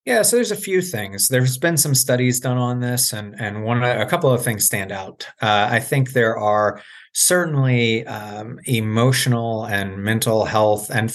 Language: English